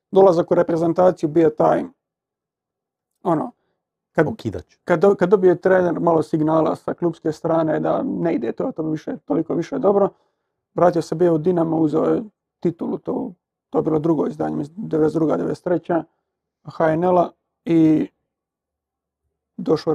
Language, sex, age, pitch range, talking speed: Croatian, male, 40-59, 155-180 Hz, 125 wpm